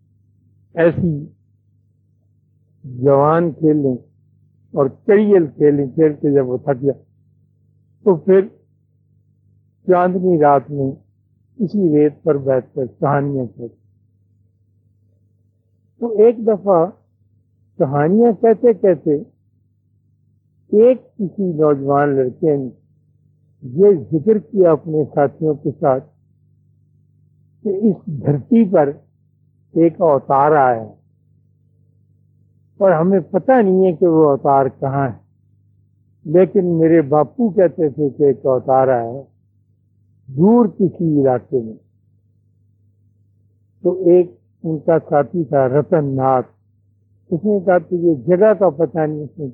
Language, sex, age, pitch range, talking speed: Urdu, male, 60-79, 110-160 Hz, 105 wpm